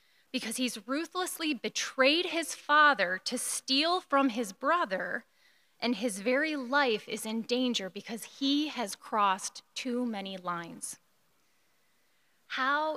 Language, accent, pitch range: English, American, 215-280 Hz